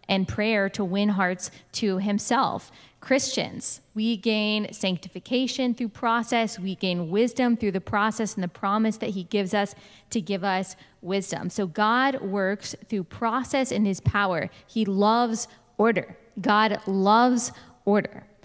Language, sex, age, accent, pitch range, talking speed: English, female, 10-29, American, 200-245 Hz, 145 wpm